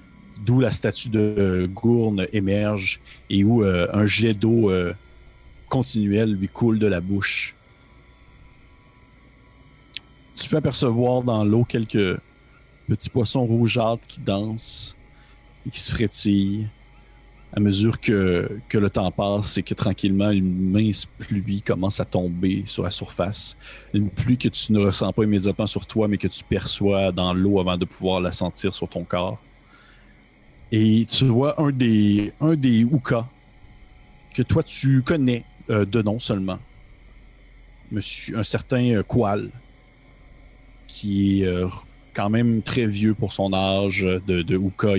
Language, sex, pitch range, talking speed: French, male, 100-115 Hz, 145 wpm